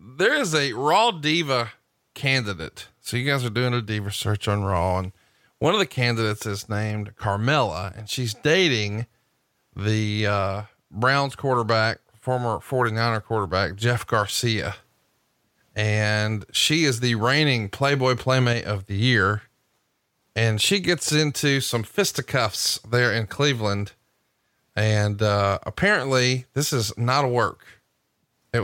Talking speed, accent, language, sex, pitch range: 135 wpm, American, English, male, 105-130 Hz